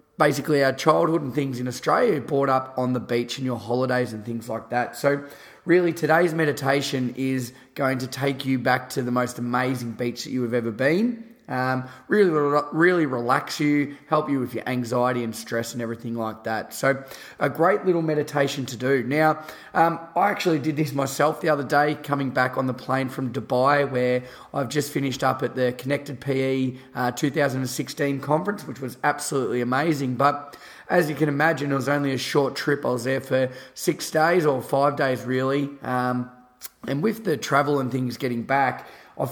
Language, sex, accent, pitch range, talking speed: English, male, Australian, 125-150 Hz, 190 wpm